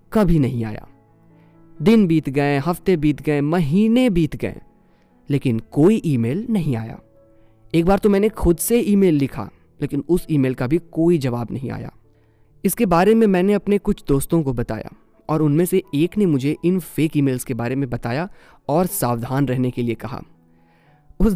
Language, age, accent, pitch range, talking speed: Hindi, 20-39, native, 125-175 Hz, 180 wpm